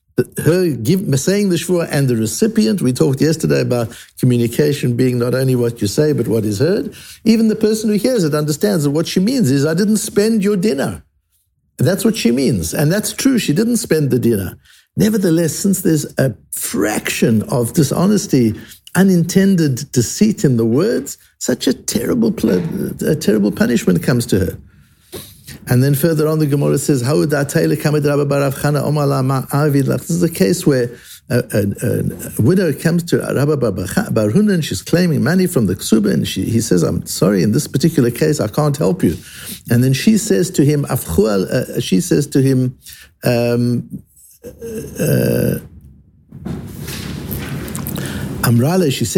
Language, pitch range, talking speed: English, 120-180 Hz, 155 wpm